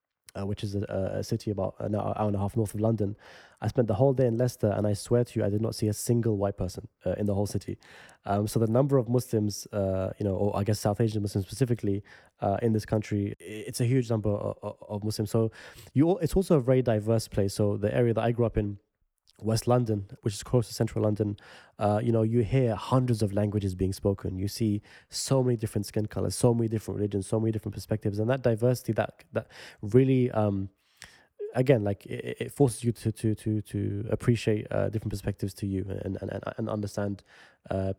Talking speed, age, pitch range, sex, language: 230 wpm, 20-39, 100-120 Hz, male, English